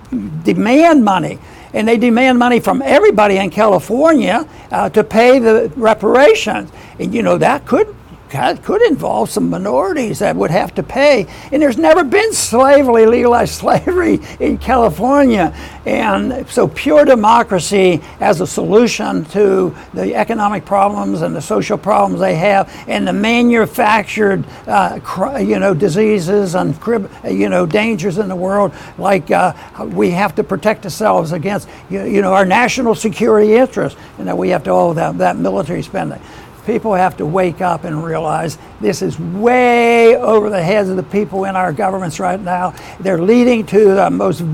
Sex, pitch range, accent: male, 190-230 Hz, American